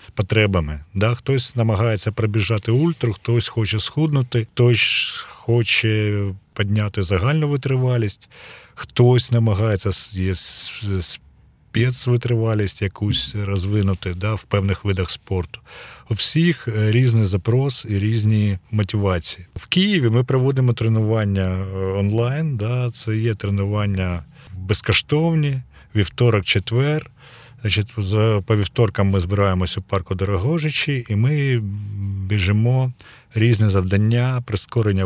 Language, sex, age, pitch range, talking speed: Ukrainian, male, 40-59, 100-120 Hz, 95 wpm